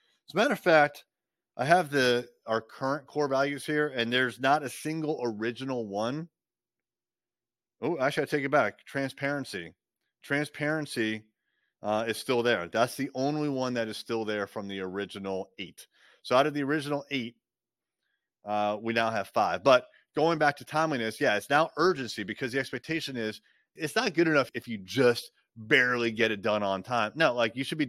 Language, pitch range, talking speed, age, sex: English, 115-145 Hz, 185 wpm, 30-49, male